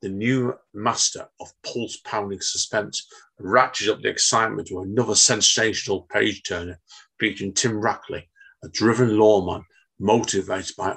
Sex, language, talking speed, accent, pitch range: male, English, 120 wpm, British, 100-125 Hz